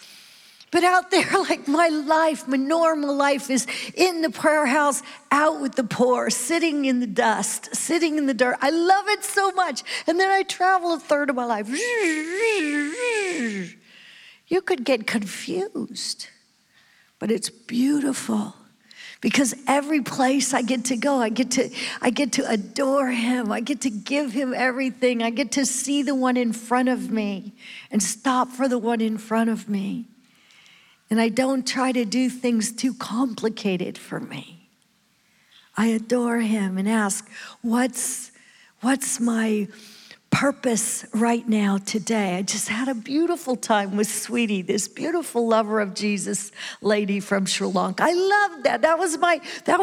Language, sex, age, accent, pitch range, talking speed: English, female, 50-69, American, 225-300 Hz, 160 wpm